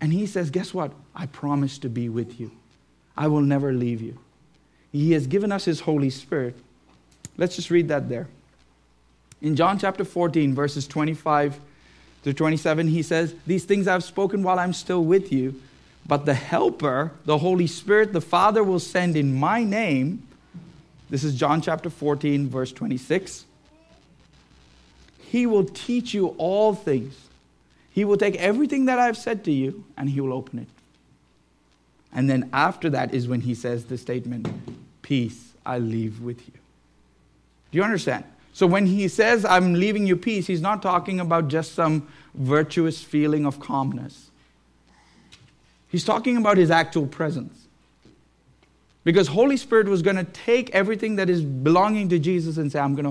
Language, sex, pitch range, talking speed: English, male, 130-185 Hz, 165 wpm